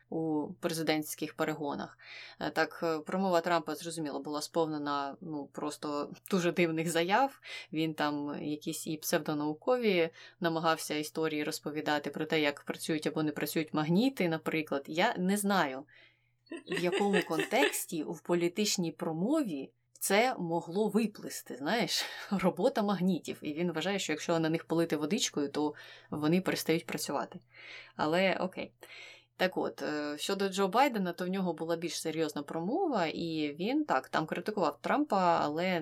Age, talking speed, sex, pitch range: 20-39, 135 wpm, female, 150-175 Hz